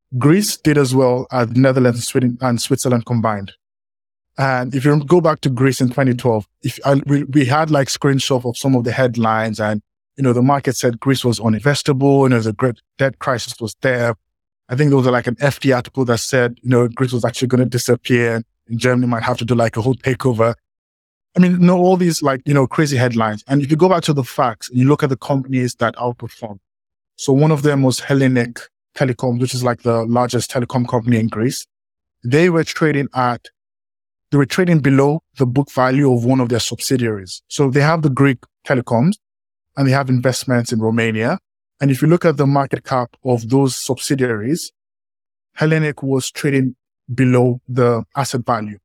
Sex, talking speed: male, 210 wpm